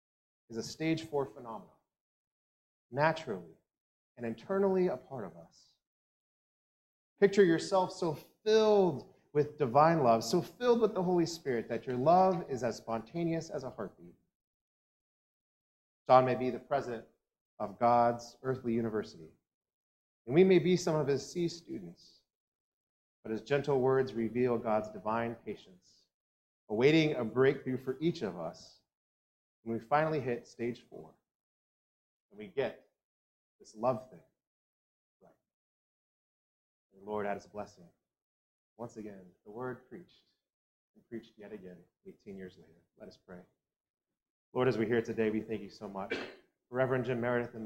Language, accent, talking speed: English, American, 145 wpm